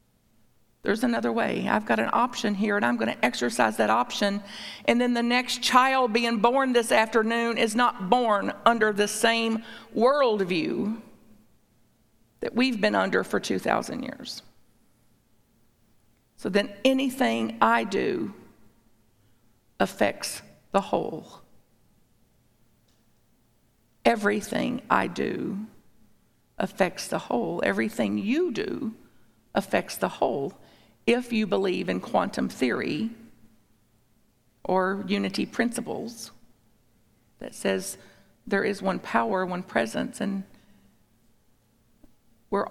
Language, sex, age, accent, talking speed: English, female, 50-69, American, 105 wpm